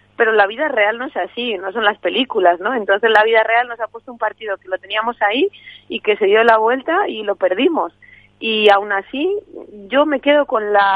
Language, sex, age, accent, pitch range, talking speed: Spanish, female, 30-49, Spanish, 190-230 Hz, 230 wpm